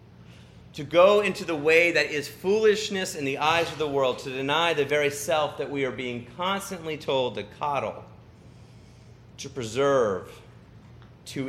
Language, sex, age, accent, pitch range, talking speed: English, male, 40-59, American, 125-155 Hz, 155 wpm